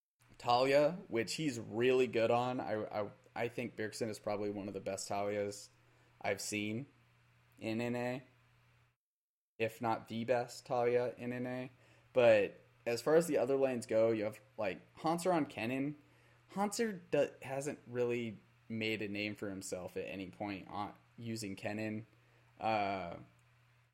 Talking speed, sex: 150 wpm, male